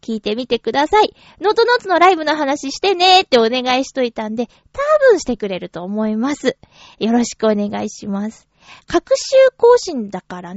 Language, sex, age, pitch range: Japanese, female, 20-39, 220-355 Hz